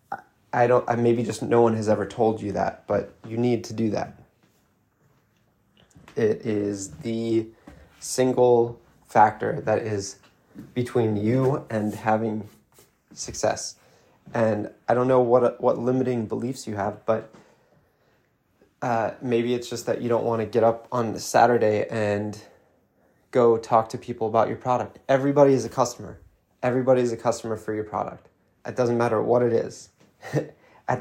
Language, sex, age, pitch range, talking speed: English, male, 20-39, 110-125 Hz, 155 wpm